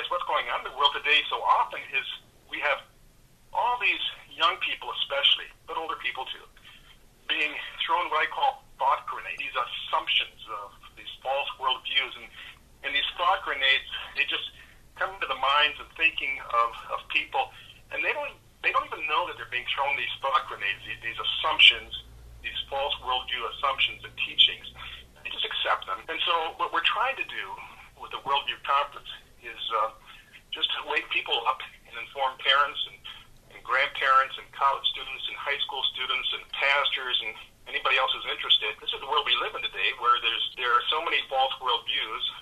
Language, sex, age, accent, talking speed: English, male, 50-69, American, 185 wpm